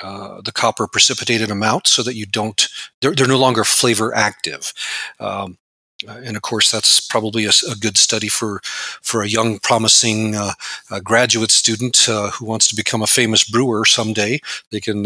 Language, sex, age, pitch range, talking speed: English, male, 40-59, 105-120 Hz, 175 wpm